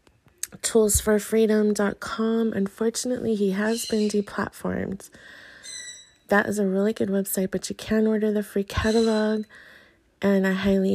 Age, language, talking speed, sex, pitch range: 30-49, English, 120 wpm, female, 165-200 Hz